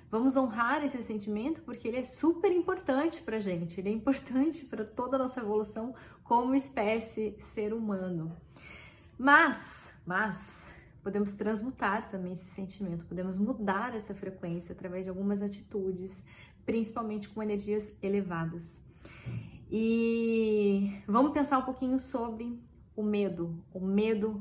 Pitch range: 200-235 Hz